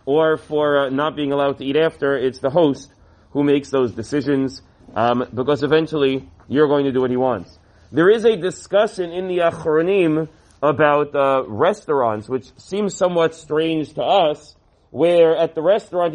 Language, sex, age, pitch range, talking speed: English, male, 30-49, 145-180 Hz, 170 wpm